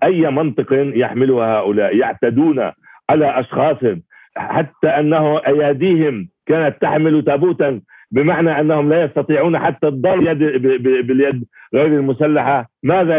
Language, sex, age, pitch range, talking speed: Arabic, male, 60-79, 125-150 Hz, 105 wpm